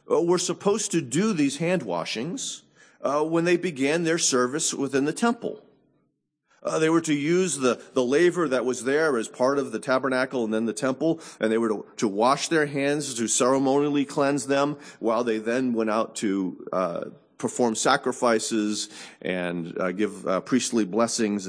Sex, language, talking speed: male, English, 175 wpm